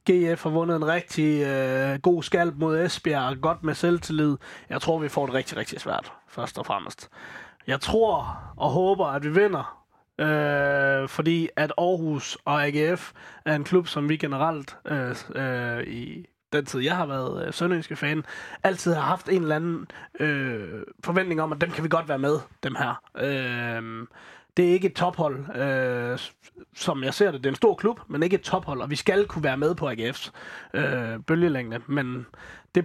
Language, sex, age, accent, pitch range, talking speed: Danish, male, 20-39, native, 135-165 Hz, 175 wpm